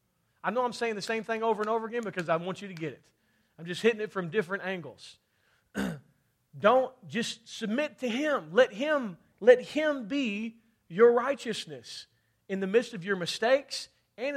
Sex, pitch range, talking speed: male, 165-235 Hz, 180 wpm